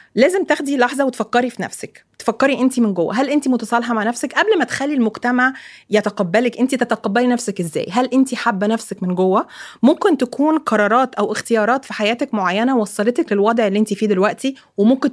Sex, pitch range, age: female, 210-265 Hz, 20-39